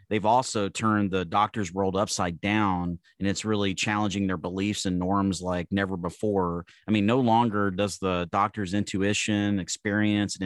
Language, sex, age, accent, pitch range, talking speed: English, male, 30-49, American, 95-110 Hz, 165 wpm